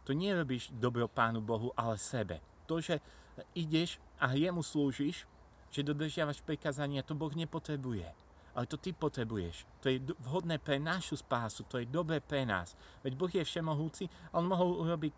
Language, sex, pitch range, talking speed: Slovak, male, 100-145 Hz, 165 wpm